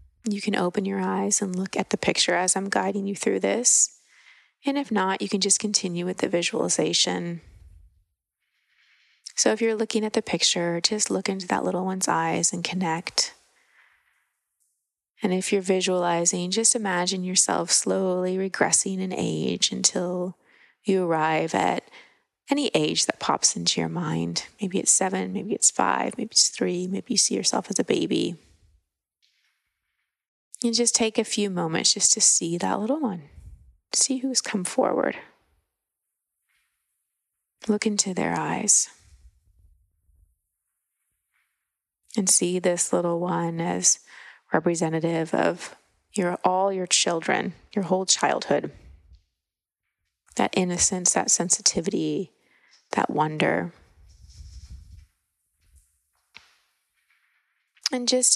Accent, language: American, English